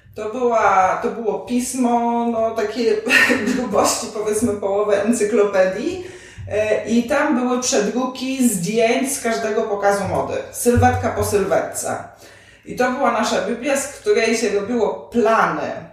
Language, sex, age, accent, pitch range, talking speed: Polish, female, 20-39, native, 185-225 Hz, 125 wpm